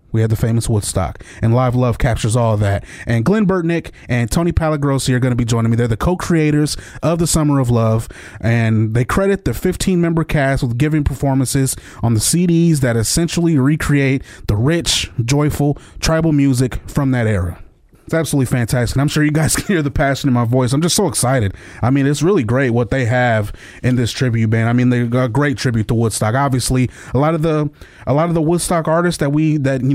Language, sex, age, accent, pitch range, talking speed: English, male, 30-49, American, 120-155 Hz, 220 wpm